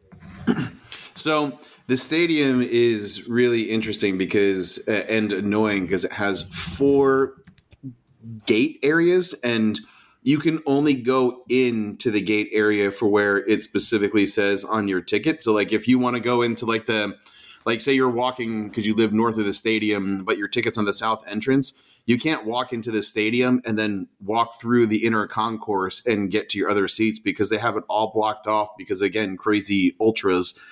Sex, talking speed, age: male, 180 wpm, 30-49